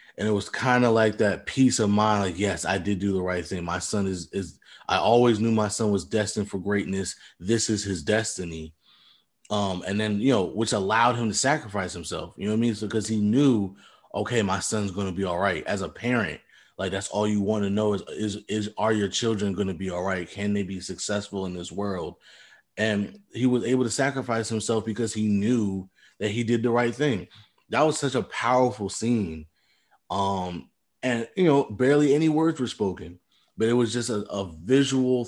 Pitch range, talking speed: 95-115 Hz, 220 wpm